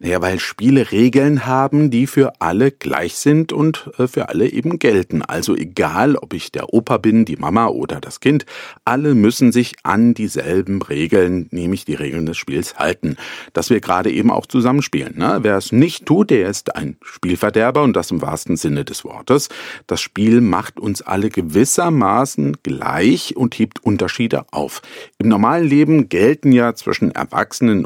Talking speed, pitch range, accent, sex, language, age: 170 wpm, 100-135 Hz, German, male, German, 50-69